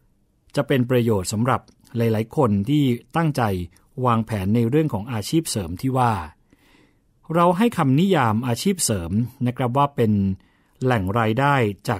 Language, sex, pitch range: Thai, male, 110-140 Hz